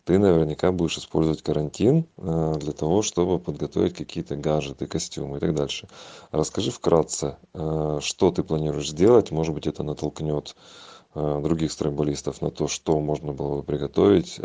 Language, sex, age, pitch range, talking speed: Russian, male, 30-49, 75-85 Hz, 140 wpm